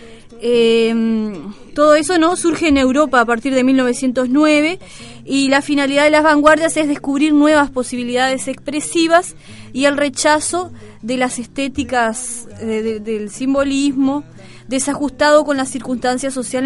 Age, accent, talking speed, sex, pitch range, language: 20-39, Argentinian, 125 wpm, female, 235-295 Hz, Spanish